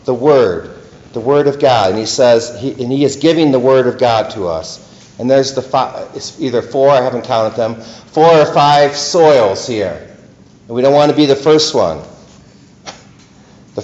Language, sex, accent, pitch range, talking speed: English, male, American, 120-150 Hz, 200 wpm